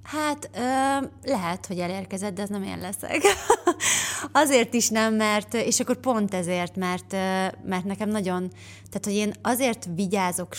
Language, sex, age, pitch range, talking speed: Hungarian, female, 20-39, 180-220 Hz, 155 wpm